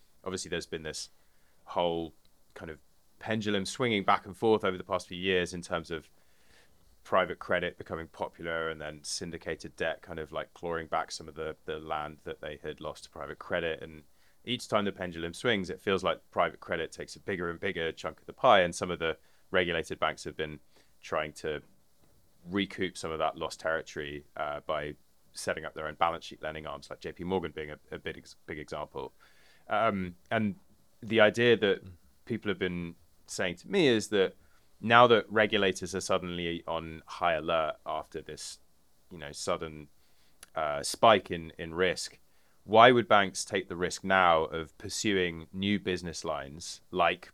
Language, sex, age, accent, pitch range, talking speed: English, male, 20-39, British, 80-95 Hz, 185 wpm